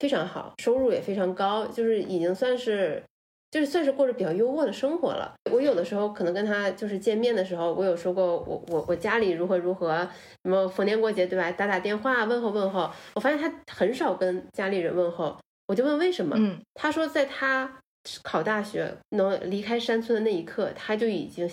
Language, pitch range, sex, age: Chinese, 185-245 Hz, female, 20-39